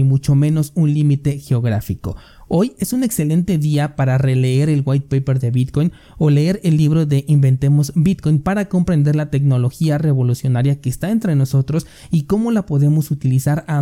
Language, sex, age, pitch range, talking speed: Spanish, male, 20-39, 130-155 Hz, 175 wpm